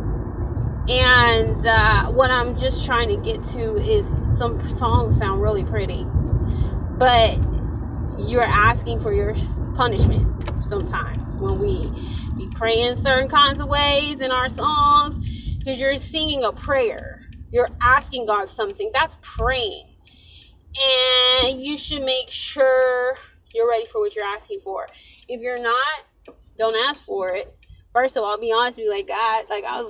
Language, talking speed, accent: English, 150 wpm, American